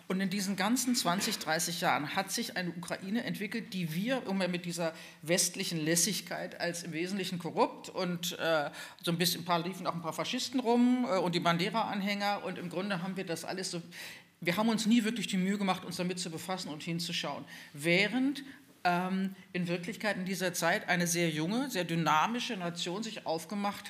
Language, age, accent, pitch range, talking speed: German, 50-69, German, 170-210 Hz, 190 wpm